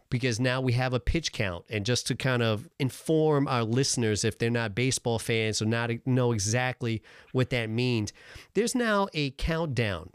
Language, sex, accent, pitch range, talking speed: English, male, American, 115-140 Hz, 185 wpm